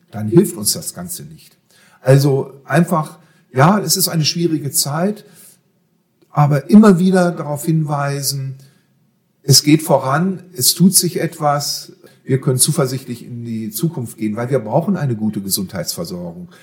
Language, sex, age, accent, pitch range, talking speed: German, male, 50-69, German, 120-180 Hz, 140 wpm